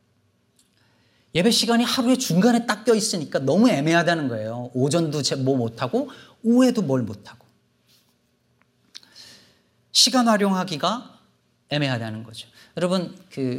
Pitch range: 125-210 Hz